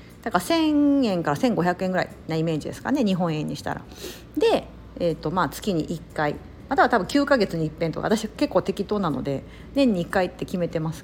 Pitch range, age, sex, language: 165-265 Hz, 50-69, female, Japanese